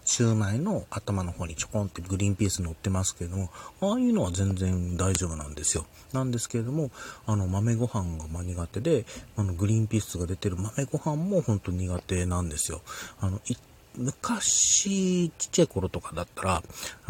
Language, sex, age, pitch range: Japanese, male, 40-59, 90-115 Hz